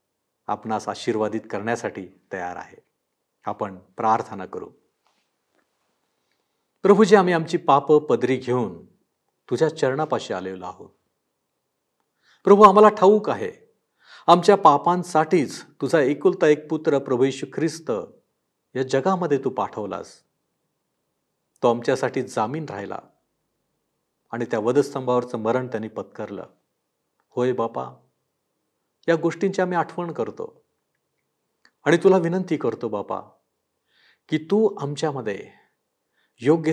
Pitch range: 120-185 Hz